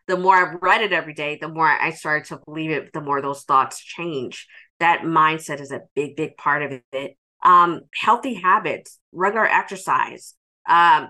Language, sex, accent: English, female, American